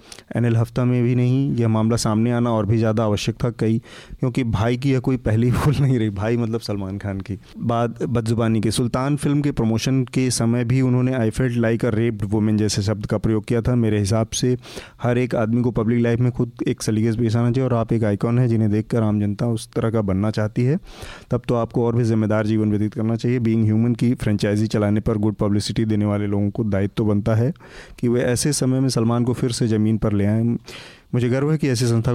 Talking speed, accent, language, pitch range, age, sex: 230 wpm, native, Hindi, 110-125 Hz, 30-49, male